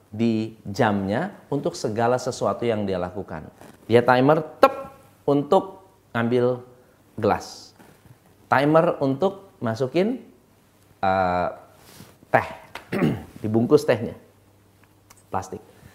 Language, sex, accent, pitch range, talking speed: Indonesian, male, native, 110-165 Hz, 85 wpm